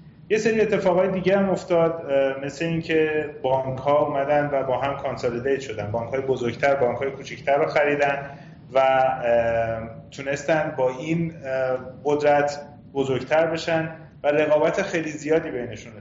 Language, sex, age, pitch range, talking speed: Persian, male, 30-49, 135-160 Hz, 140 wpm